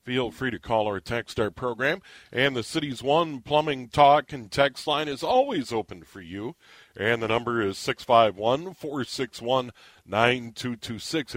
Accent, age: American, 40-59